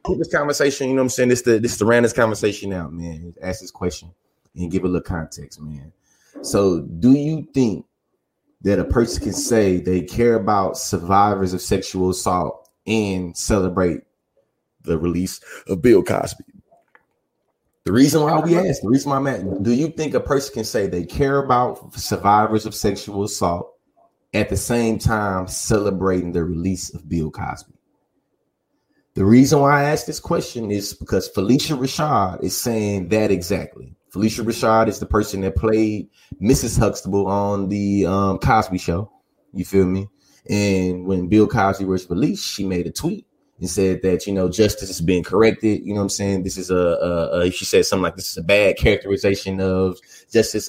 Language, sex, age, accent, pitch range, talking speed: English, male, 20-39, American, 95-115 Hz, 180 wpm